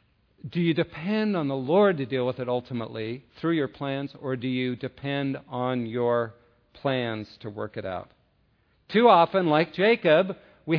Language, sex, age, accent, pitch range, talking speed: English, male, 50-69, American, 125-170 Hz, 165 wpm